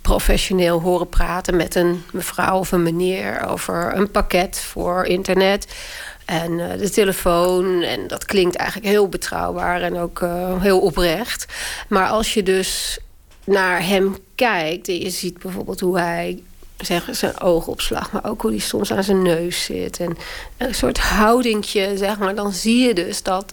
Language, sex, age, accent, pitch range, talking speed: Dutch, female, 40-59, Dutch, 175-200 Hz, 170 wpm